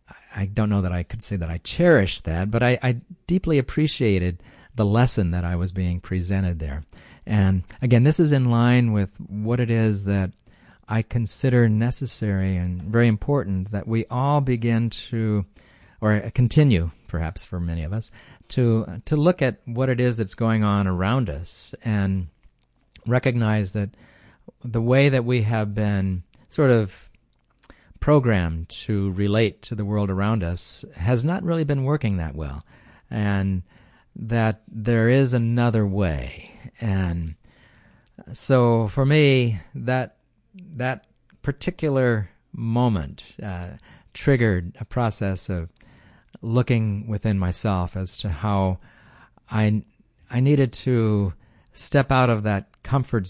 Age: 40-59